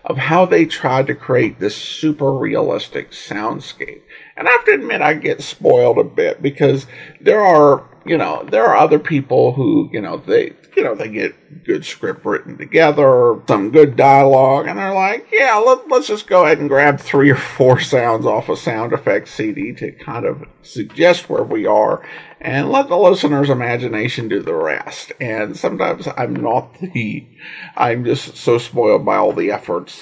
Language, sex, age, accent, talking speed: English, male, 50-69, American, 180 wpm